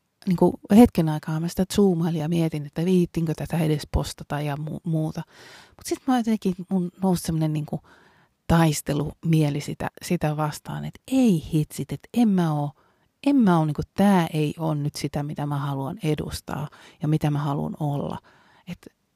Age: 30-49